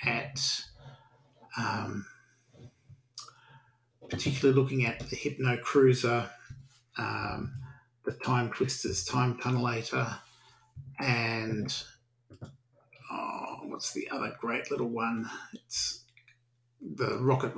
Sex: male